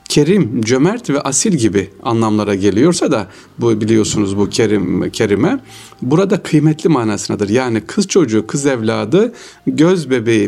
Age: 60-79